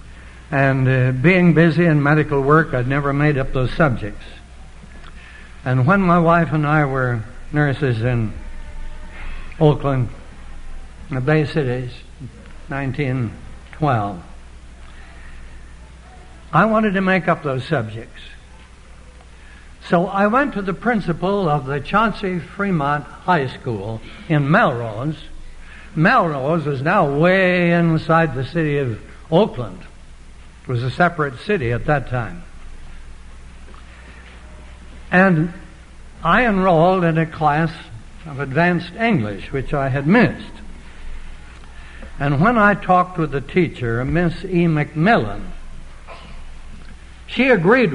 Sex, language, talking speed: male, Danish, 110 wpm